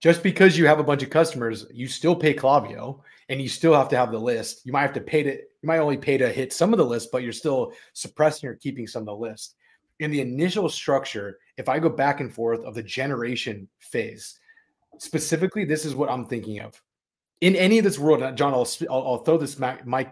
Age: 30-49